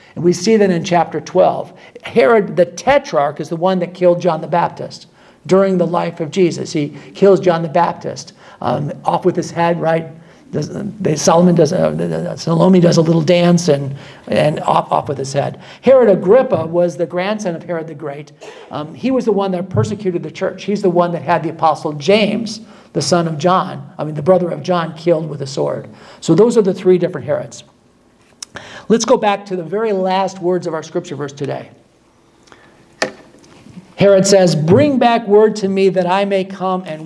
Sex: male